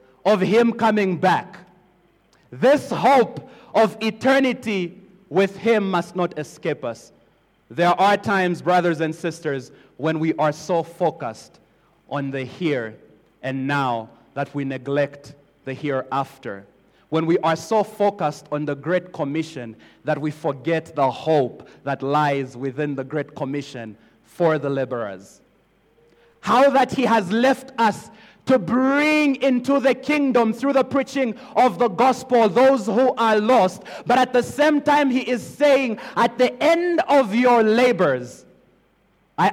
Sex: male